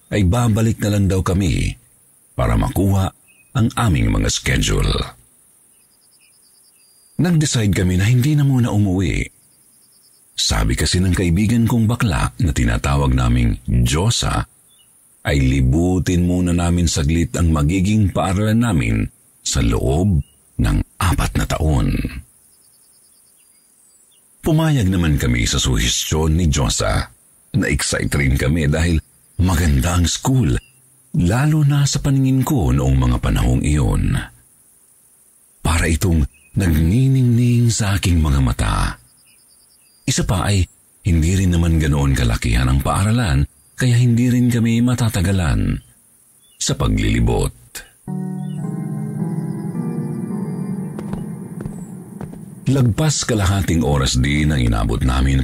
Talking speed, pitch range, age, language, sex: 110 wpm, 80-125 Hz, 50-69, Filipino, male